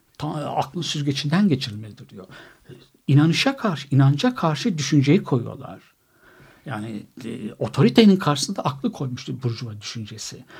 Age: 60-79